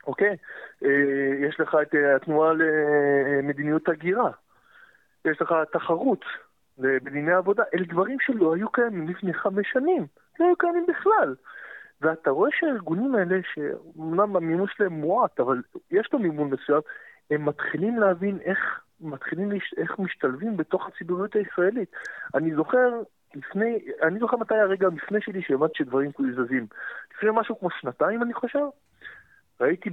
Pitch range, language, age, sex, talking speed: 155-235 Hz, Hebrew, 20-39, male, 140 wpm